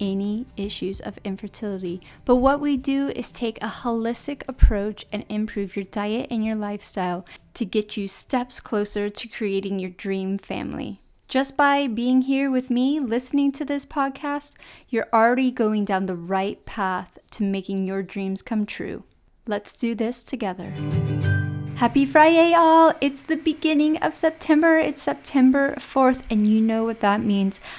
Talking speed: 160 wpm